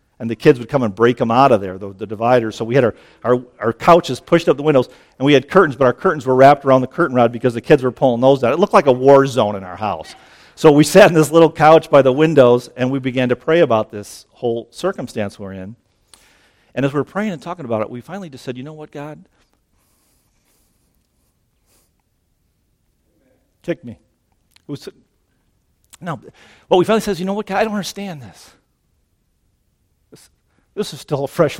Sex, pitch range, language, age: male, 115-160 Hz, English, 50-69